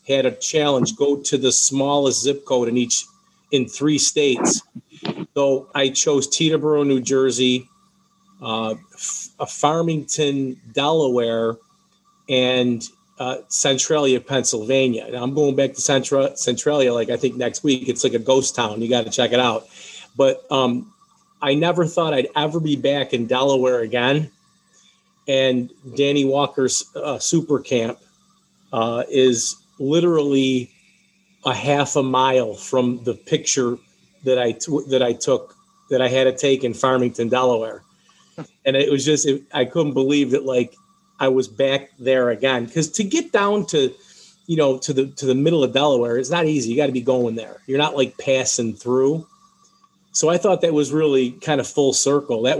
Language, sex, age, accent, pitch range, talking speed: English, male, 40-59, American, 125-155 Hz, 165 wpm